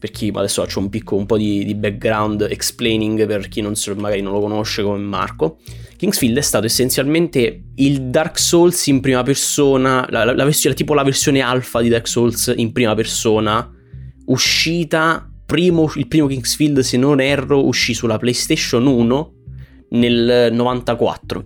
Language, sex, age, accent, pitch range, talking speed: Italian, male, 20-39, native, 105-130 Hz, 165 wpm